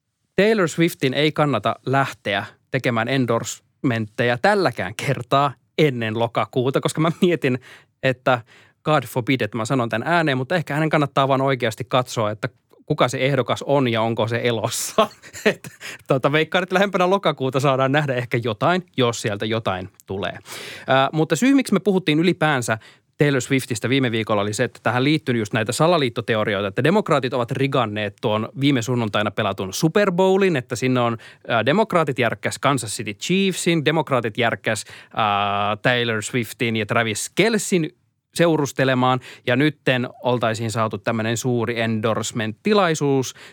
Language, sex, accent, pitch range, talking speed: Finnish, male, native, 115-150 Hz, 145 wpm